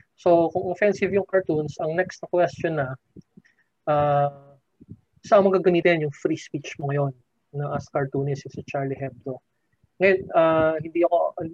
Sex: male